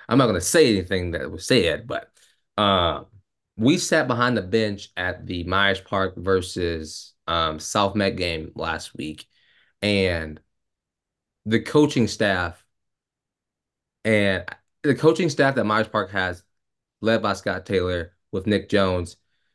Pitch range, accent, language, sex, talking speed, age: 95-115 Hz, American, English, male, 140 wpm, 20-39